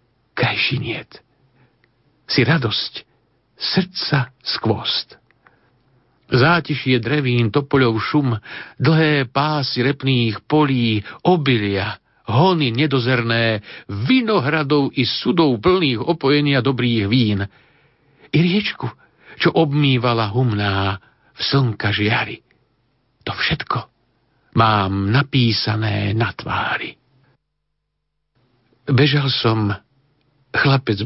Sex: male